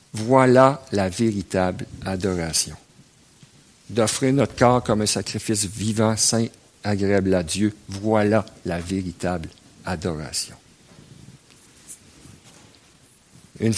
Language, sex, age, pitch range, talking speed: French, male, 50-69, 95-125 Hz, 85 wpm